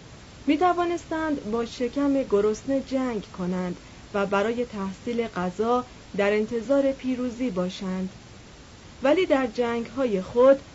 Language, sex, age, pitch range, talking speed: Persian, female, 30-49, 185-265 Hz, 100 wpm